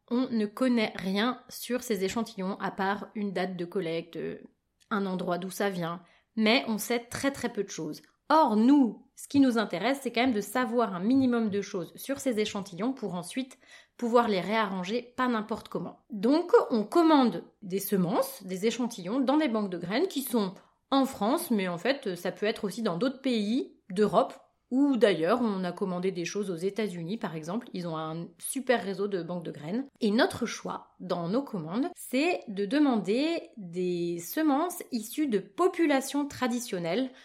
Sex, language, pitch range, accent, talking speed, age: female, French, 190-250 Hz, French, 185 wpm, 30-49